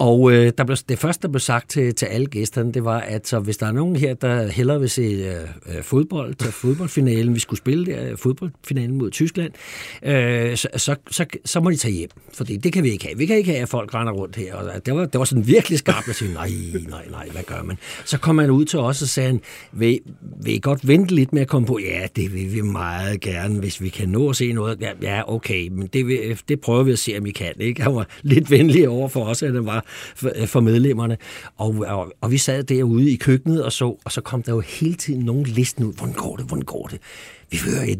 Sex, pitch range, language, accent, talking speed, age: male, 110-150 Hz, Danish, native, 255 wpm, 60-79